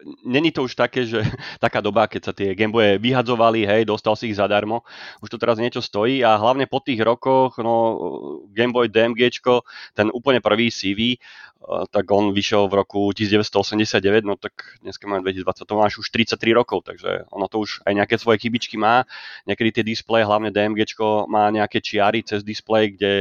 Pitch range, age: 100-115 Hz, 30-49